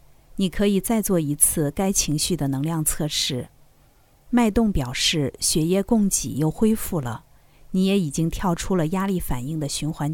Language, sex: Chinese, female